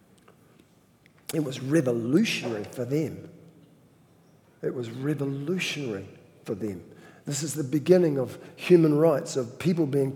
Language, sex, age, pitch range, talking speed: English, male, 50-69, 150-180 Hz, 120 wpm